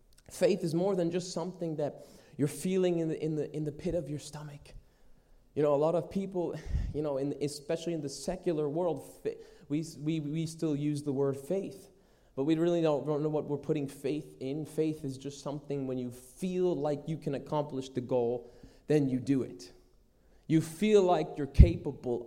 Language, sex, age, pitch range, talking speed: English, male, 20-39, 135-185 Hz, 200 wpm